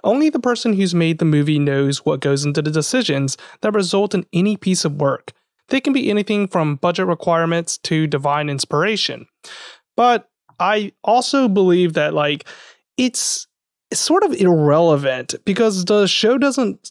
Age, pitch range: 30-49, 150-205 Hz